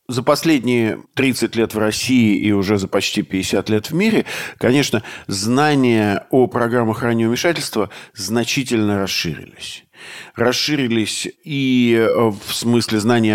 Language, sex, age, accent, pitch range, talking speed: Russian, male, 50-69, native, 110-125 Hz, 120 wpm